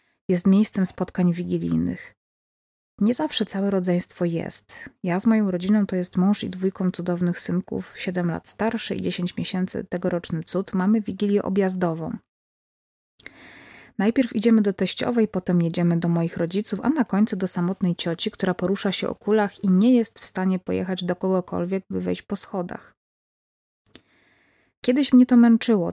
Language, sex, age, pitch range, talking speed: Polish, female, 30-49, 180-210 Hz, 155 wpm